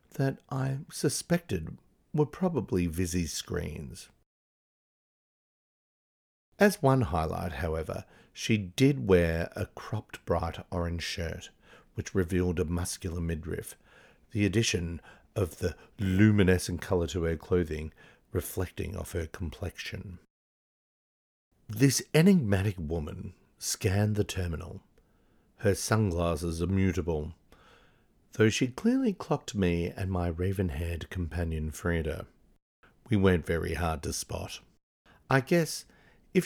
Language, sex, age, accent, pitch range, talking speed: English, male, 50-69, Australian, 85-110 Hz, 105 wpm